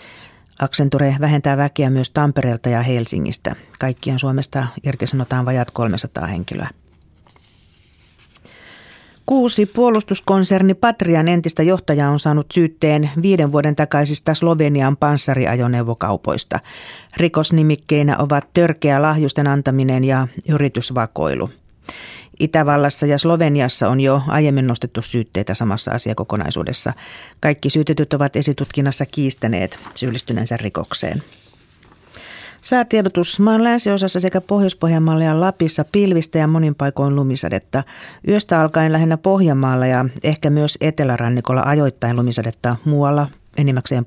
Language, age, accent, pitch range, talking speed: Finnish, 40-59, native, 130-160 Hz, 100 wpm